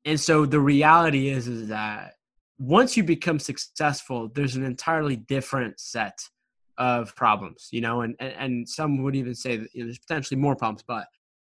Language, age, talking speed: English, 20-39, 185 wpm